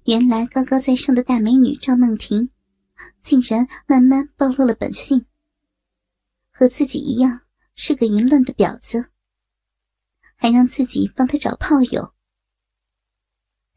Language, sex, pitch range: Chinese, male, 195-265 Hz